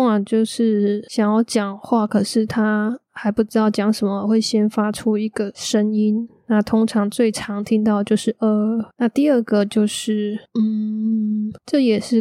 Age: 10-29